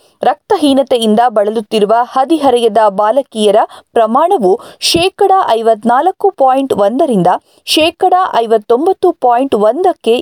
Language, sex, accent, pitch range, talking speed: Kannada, female, native, 225-300 Hz, 75 wpm